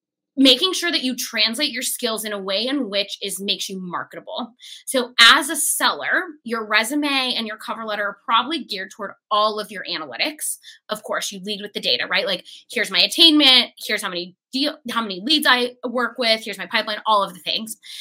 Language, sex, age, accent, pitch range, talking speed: English, female, 20-39, American, 205-260 Hz, 210 wpm